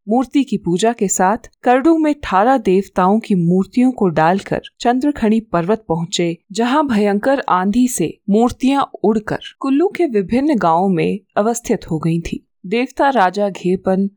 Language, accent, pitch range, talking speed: Hindi, native, 185-245 Hz, 145 wpm